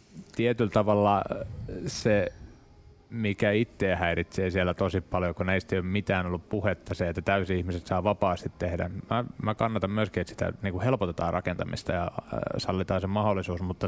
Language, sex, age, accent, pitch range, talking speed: Finnish, male, 20-39, native, 90-105 Hz, 145 wpm